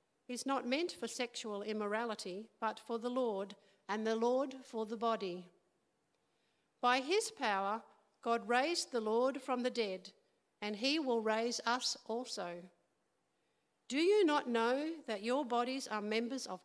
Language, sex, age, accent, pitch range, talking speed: English, female, 50-69, Australian, 210-265 Hz, 150 wpm